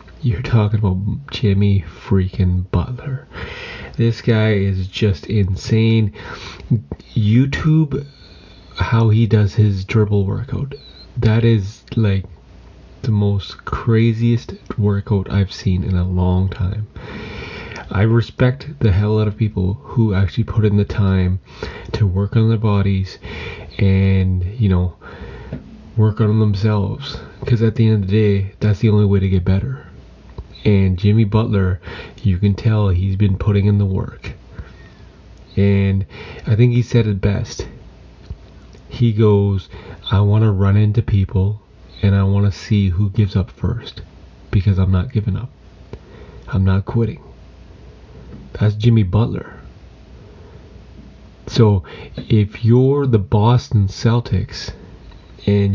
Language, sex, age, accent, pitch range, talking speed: English, male, 30-49, American, 95-115 Hz, 130 wpm